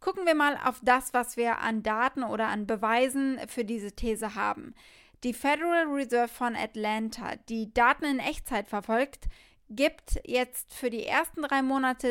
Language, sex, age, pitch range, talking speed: German, female, 20-39, 220-265 Hz, 165 wpm